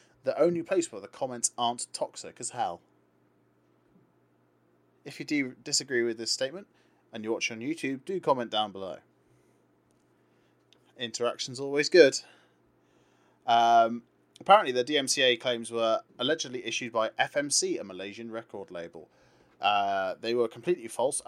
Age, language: 30-49, English